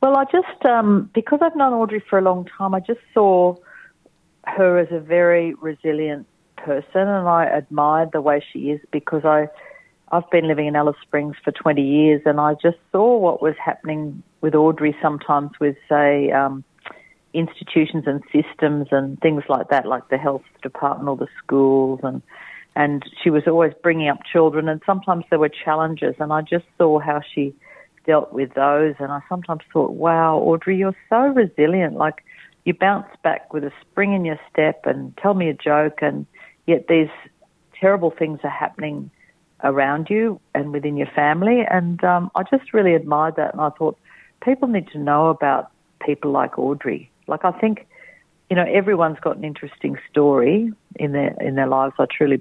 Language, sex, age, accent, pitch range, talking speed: English, female, 40-59, Australian, 145-180 Hz, 185 wpm